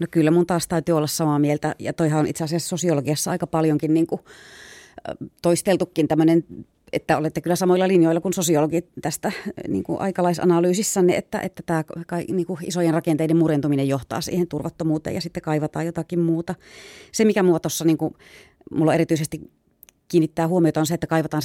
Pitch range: 145-170 Hz